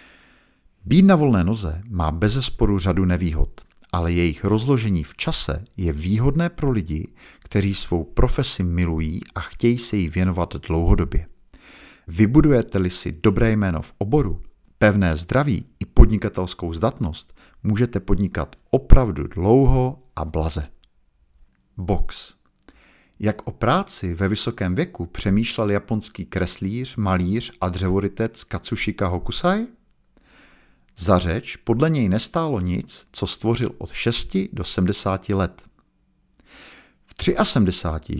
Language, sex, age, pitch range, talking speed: Czech, male, 50-69, 90-115 Hz, 115 wpm